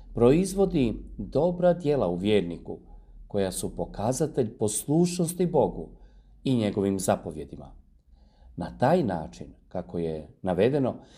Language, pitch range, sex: Croatian, 85-135 Hz, male